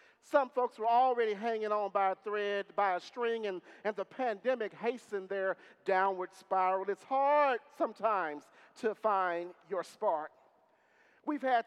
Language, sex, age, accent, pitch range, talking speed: English, male, 40-59, American, 195-245 Hz, 150 wpm